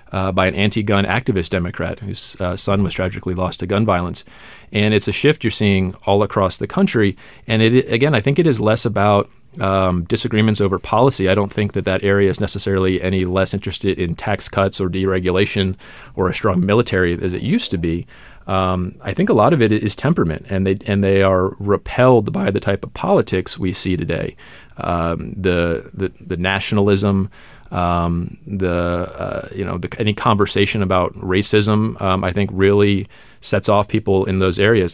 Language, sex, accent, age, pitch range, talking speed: English, male, American, 30-49, 95-105 Hz, 190 wpm